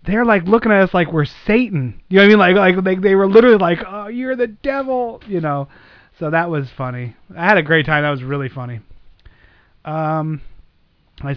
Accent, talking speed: American, 215 wpm